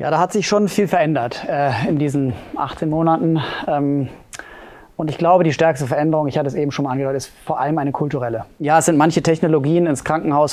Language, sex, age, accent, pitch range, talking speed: German, male, 30-49, German, 130-160 Hz, 215 wpm